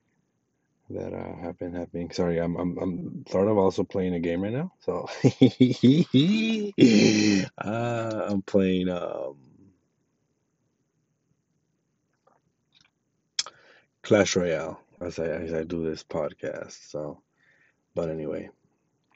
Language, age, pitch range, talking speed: English, 30-49, 85-95 Hz, 100 wpm